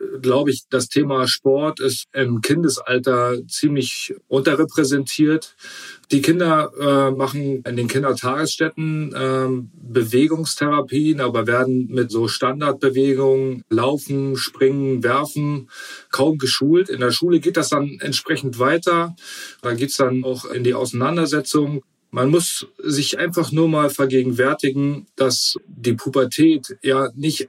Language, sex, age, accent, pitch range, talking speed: German, male, 40-59, German, 130-150 Hz, 125 wpm